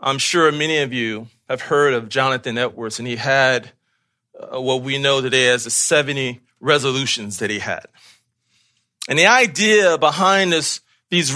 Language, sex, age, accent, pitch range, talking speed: English, male, 40-59, American, 145-200 Hz, 160 wpm